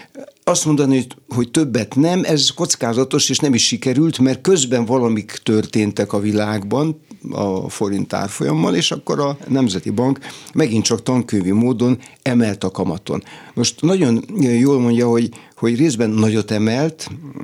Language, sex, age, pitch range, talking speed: Hungarian, male, 60-79, 110-135 Hz, 145 wpm